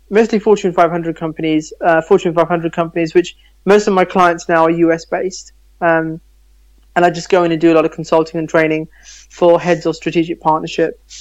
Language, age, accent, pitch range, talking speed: English, 20-39, British, 160-175 Hz, 185 wpm